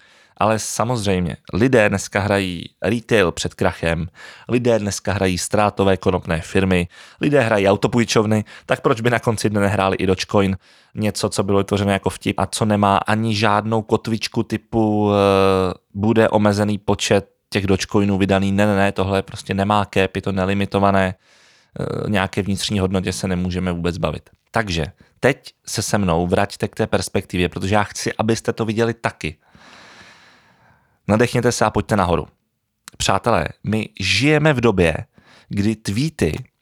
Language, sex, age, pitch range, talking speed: Czech, male, 20-39, 95-120 Hz, 145 wpm